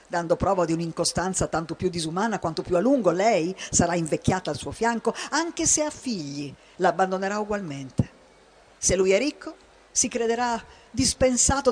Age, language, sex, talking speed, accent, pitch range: 50-69, Italian, female, 155 wpm, native, 165-230 Hz